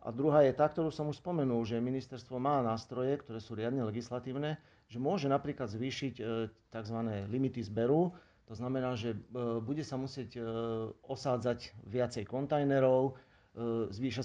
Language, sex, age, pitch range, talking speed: Slovak, male, 40-59, 115-140 Hz, 140 wpm